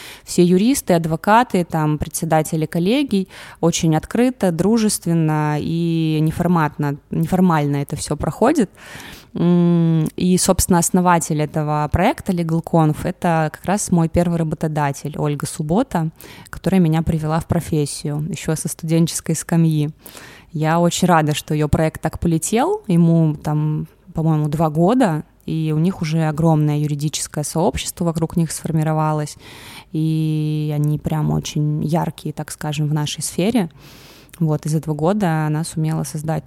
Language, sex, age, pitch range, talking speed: Russian, female, 20-39, 155-175 Hz, 130 wpm